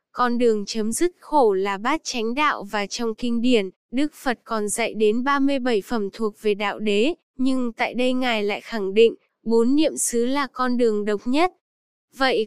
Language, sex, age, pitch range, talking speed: Vietnamese, female, 10-29, 220-270 Hz, 190 wpm